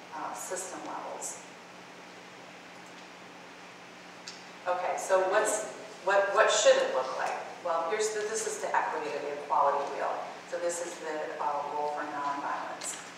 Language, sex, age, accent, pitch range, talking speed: English, female, 40-59, American, 150-190 Hz, 140 wpm